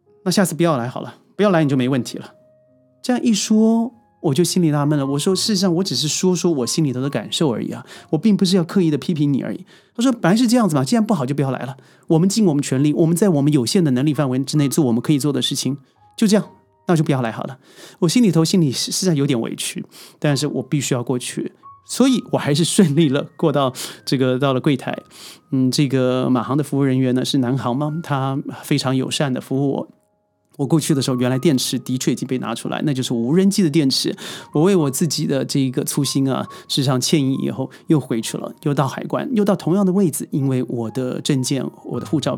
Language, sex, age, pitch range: Chinese, male, 30-49, 130-180 Hz